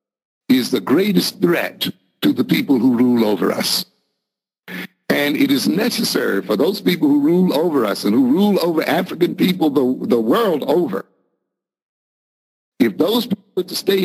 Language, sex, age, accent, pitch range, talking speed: English, male, 60-79, American, 120-195 Hz, 160 wpm